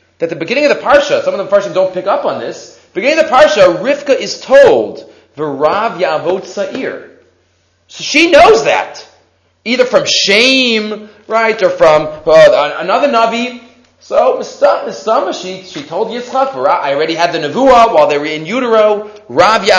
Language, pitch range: English, 155-250 Hz